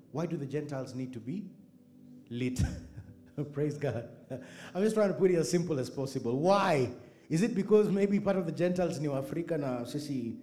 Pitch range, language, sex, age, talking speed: 130-180 Hz, English, male, 30-49, 195 wpm